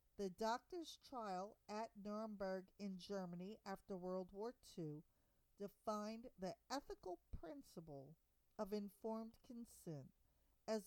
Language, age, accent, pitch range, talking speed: English, 50-69, American, 185-250 Hz, 105 wpm